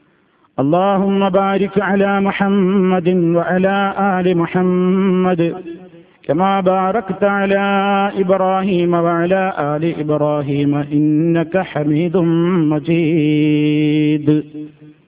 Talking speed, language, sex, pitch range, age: 70 wpm, Malayalam, male, 160-195 Hz, 50-69